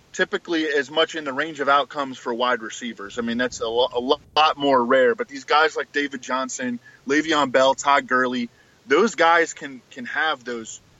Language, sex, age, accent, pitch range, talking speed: English, male, 20-39, American, 130-165 Hz, 190 wpm